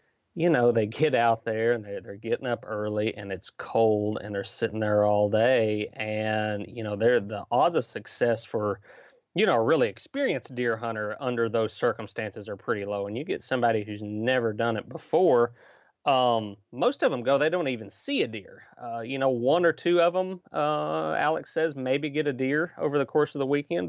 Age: 30-49